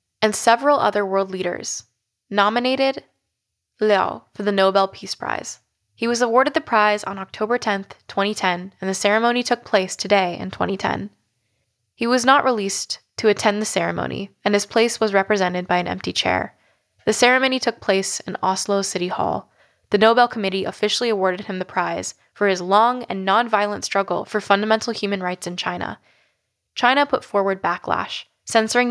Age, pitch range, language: 10-29, 185-220 Hz, English